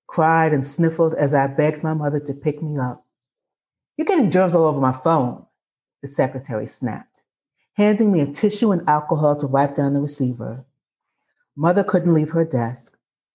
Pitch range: 140-195 Hz